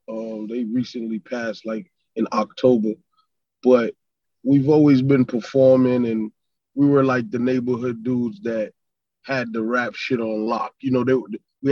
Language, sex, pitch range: English, male, 120-140 Hz